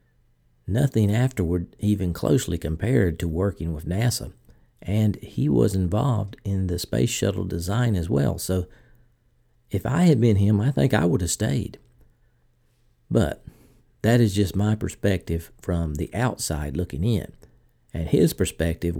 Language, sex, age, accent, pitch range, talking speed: English, male, 50-69, American, 85-115 Hz, 145 wpm